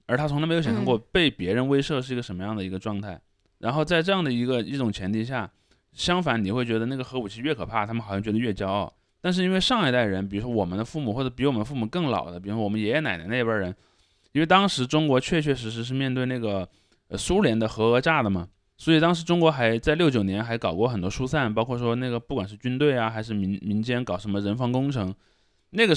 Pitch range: 105-145 Hz